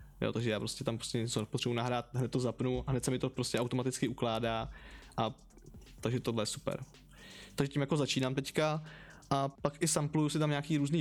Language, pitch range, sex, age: Slovak, 120-150 Hz, male, 20-39